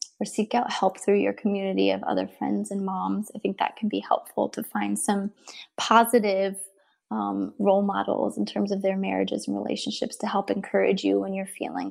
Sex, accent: female, American